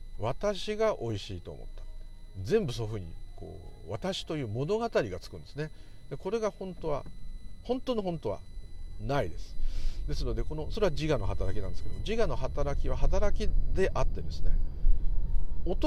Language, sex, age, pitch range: Japanese, male, 50-69, 80-90 Hz